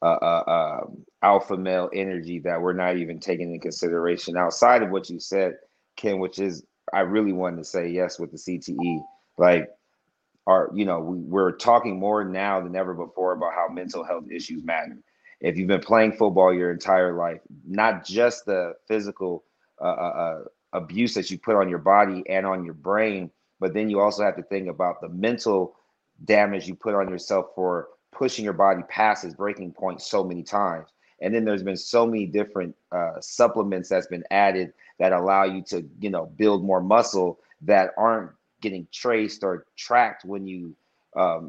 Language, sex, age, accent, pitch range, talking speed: English, male, 30-49, American, 90-105 Hz, 185 wpm